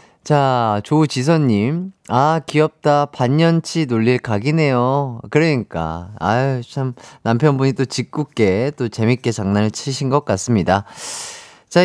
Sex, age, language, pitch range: male, 30-49, Korean, 125-180 Hz